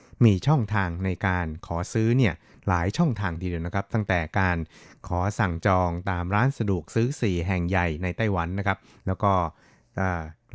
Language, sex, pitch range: Thai, male, 90-105 Hz